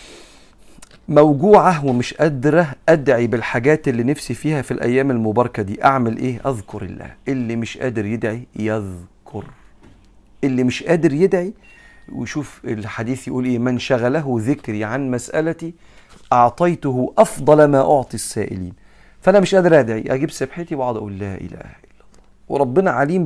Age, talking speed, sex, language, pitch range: 40-59, 135 wpm, male, Arabic, 110-140 Hz